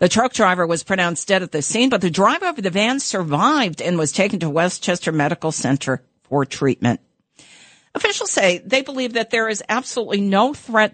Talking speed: 190 wpm